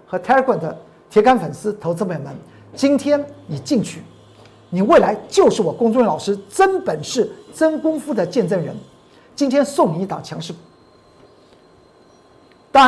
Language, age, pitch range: Chinese, 50-69, 195-300 Hz